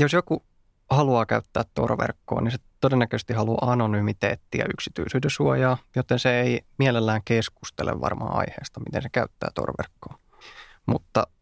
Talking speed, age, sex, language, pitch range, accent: 125 wpm, 20-39, male, Finnish, 110-125 Hz, native